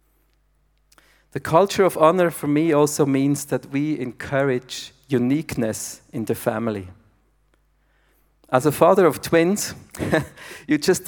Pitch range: 120-150 Hz